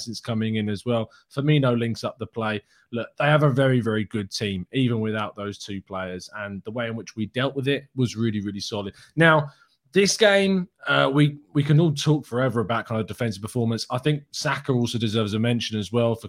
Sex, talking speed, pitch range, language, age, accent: male, 225 wpm, 110-145 Hz, English, 20-39, British